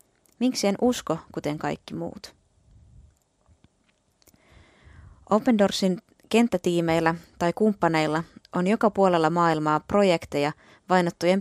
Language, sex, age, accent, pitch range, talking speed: Finnish, female, 20-39, native, 165-200 Hz, 85 wpm